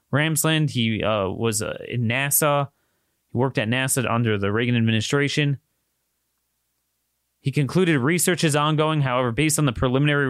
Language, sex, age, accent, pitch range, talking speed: English, male, 30-49, American, 115-150 Hz, 145 wpm